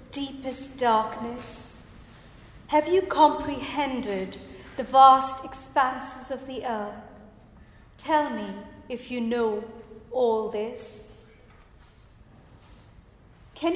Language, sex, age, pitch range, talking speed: English, female, 40-59, 225-295 Hz, 85 wpm